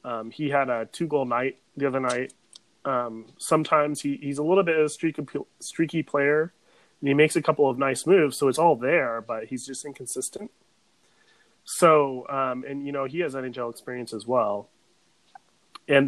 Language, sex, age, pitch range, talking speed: English, male, 30-49, 125-155 Hz, 180 wpm